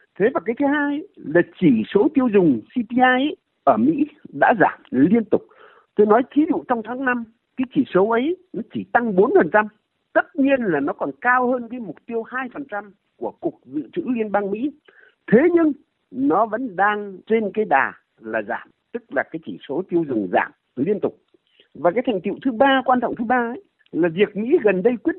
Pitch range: 205-285 Hz